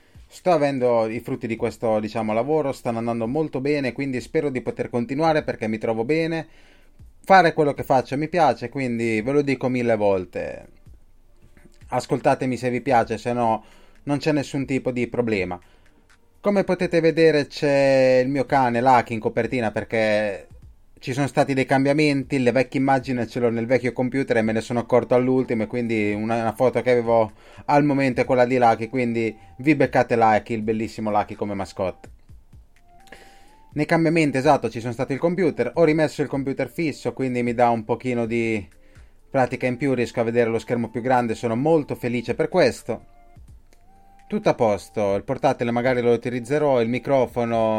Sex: male